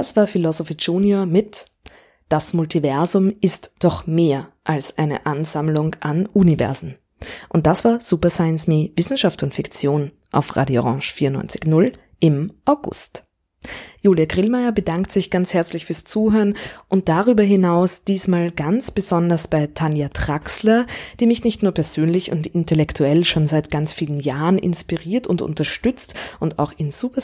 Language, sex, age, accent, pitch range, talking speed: German, female, 20-39, German, 155-195 Hz, 145 wpm